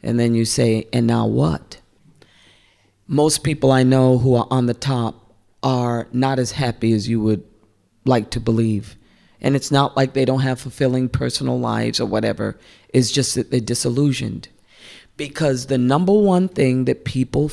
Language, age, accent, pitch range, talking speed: English, 40-59, American, 115-145 Hz, 170 wpm